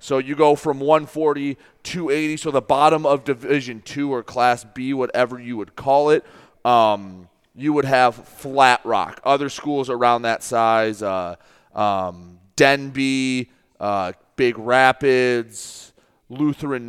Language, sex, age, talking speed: English, male, 30-49, 140 wpm